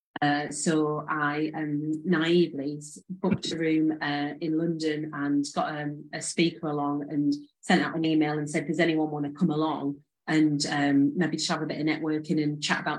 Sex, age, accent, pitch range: female, 30-49, British, 145-175 Hz